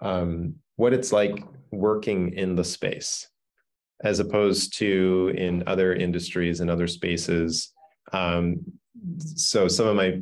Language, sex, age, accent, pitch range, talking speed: English, male, 30-49, American, 90-100 Hz, 130 wpm